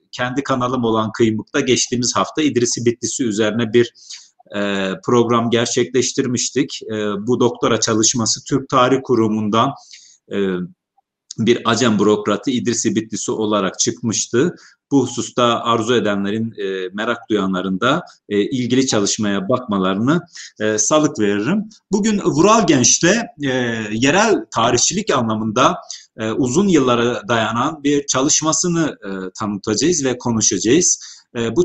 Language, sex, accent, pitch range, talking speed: Turkish, male, native, 110-140 Hz, 105 wpm